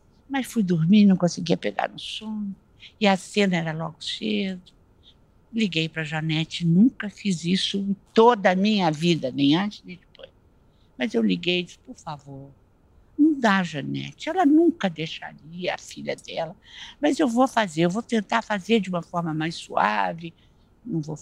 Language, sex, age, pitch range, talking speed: Portuguese, female, 60-79, 150-215 Hz, 175 wpm